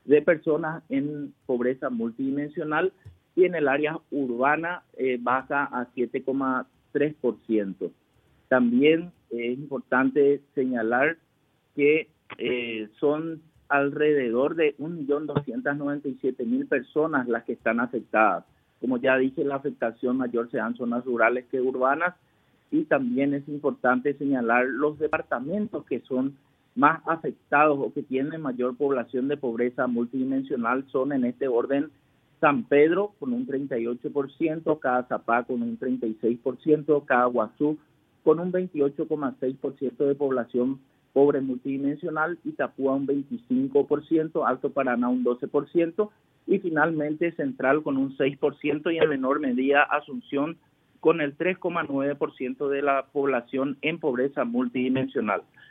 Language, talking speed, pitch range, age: Spanish, 120 wpm, 130-150 Hz, 50-69